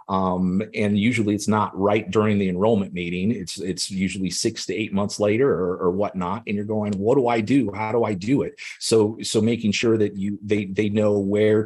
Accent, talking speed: American, 220 wpm